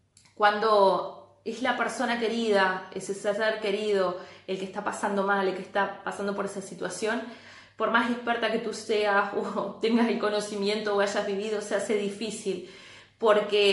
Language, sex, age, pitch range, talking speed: Spanish, female, 20-39, 195-235 Hz, 165 wpm